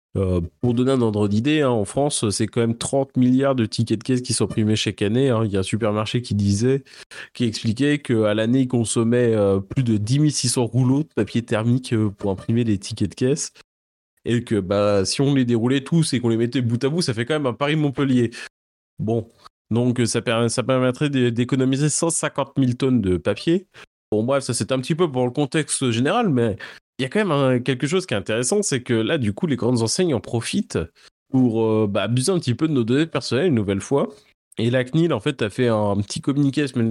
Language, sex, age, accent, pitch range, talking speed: French, male, 20-39, French, 110-135 Hz, 240 wpm